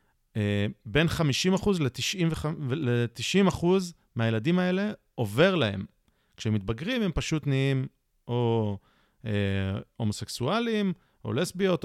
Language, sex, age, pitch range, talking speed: Hebrew, male, 30-49, 105-150 Hz, 85 wpm